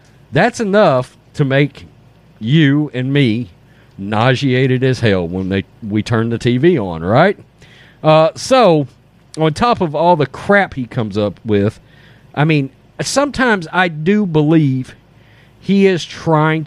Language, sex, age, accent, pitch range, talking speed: English, male, 40-59, American, 120-160 Hz, 135 wpm